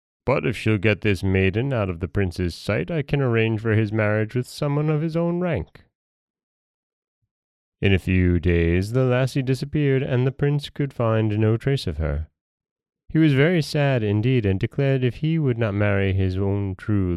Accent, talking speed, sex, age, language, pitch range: American, 190 wpm, male, 30-49, English, 95-115 Hz